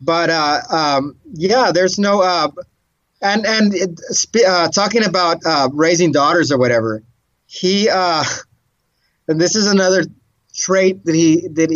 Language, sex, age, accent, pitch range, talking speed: English, male, 30-49, American, 140-185 Hz, 145 wpm